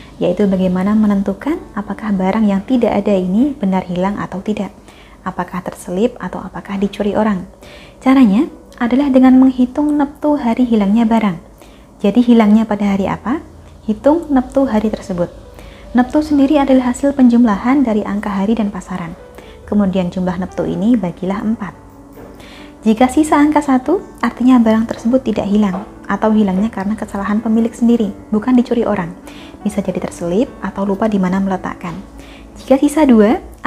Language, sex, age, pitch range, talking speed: Indonesian, female, 20-39, 195-245 Hz, 145 wpm